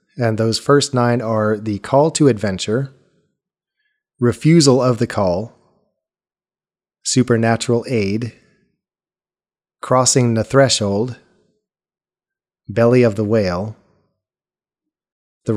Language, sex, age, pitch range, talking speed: English, male, 30-49, 110-125 Hz, 90 wpm